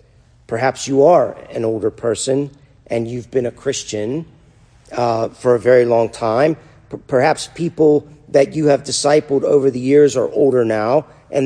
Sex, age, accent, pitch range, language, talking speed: male, 50-69, American, 115-150 Hz, English, 160 wpm